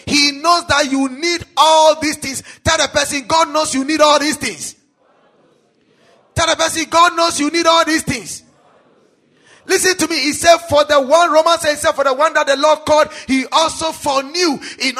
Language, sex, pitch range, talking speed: English, male, 270-335 Hz, 205 wpm